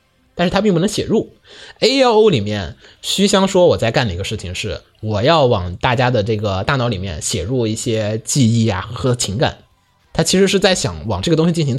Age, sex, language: 20-39, male, Chinese